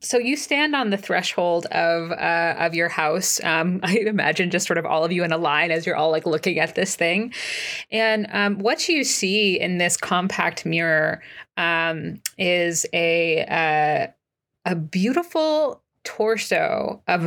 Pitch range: 170-215 Hz